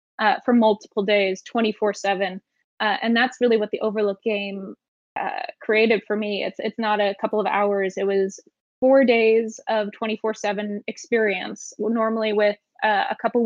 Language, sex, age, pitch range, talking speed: English, female, 20-39, 200-235 Hz, 170 wpm